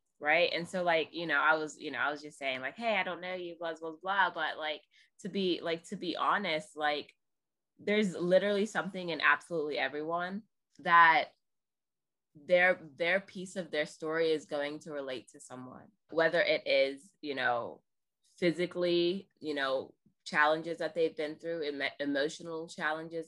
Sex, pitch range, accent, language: female, 160-200 Hz, American, English